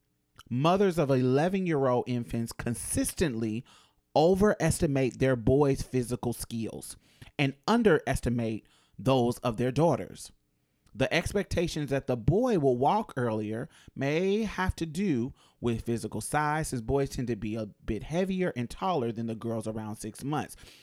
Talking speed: 140 wpm